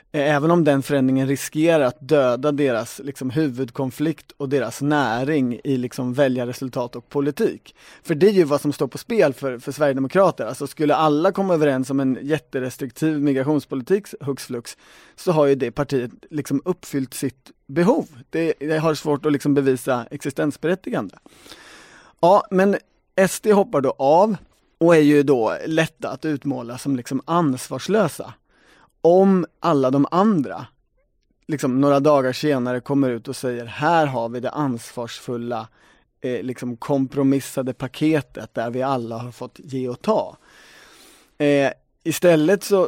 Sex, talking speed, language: male, 150 wpm, Swedish